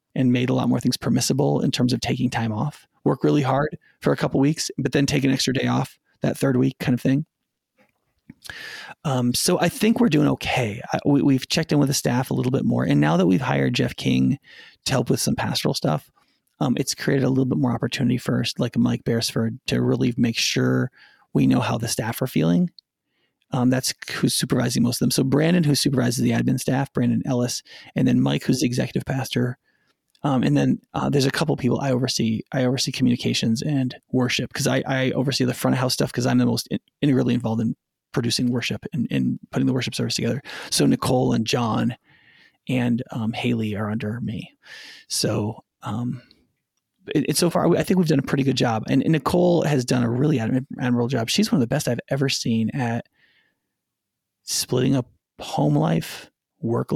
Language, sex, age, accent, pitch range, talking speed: English, male, 30-49, American, 120-140 Hz, 210 wpm